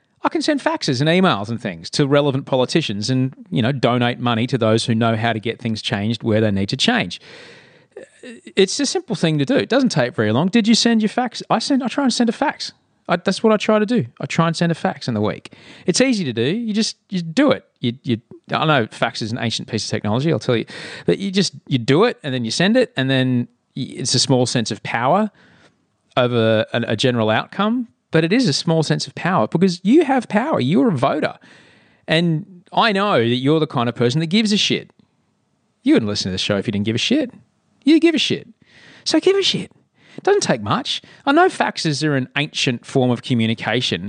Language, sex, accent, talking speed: English, male, Australian, 240 wpm